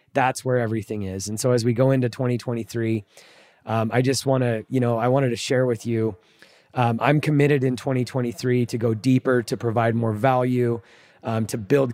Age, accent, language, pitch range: 20-39, American, English, 115-135 Hz